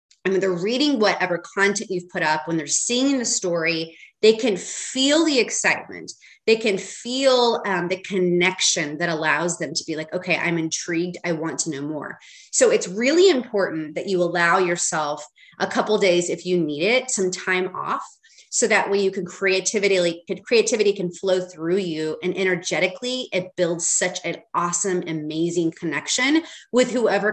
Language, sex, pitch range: English, female, 170-220 Hz